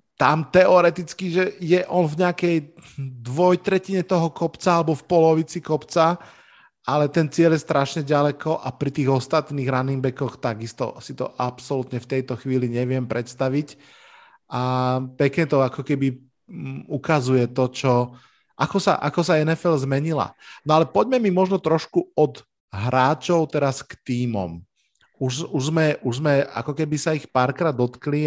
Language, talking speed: Slovak, 150 wpm